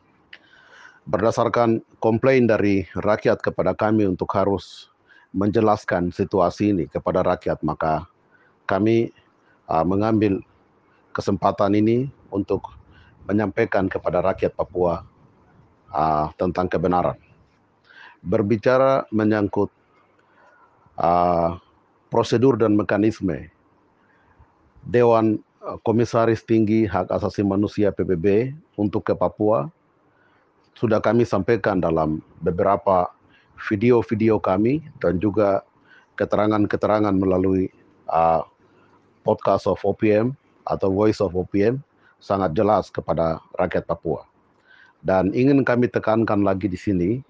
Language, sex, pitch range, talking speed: Malay, male, 95-115 Hz, 95 wpm